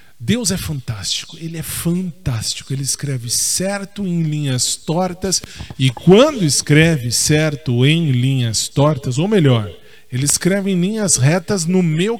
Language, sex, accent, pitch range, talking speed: Portuguese, male, Brazilian, 125-175 Hz, 140 wpm